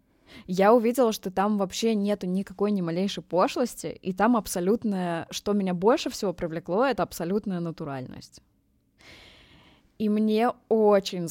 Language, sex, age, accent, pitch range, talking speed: Russian, female, 20-39, native, 170-210 Hz, 125 wpm